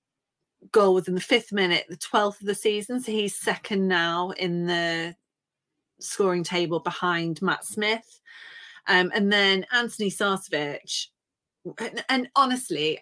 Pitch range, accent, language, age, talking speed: 160-200 Hz, British, English, 30-49, 130 wpm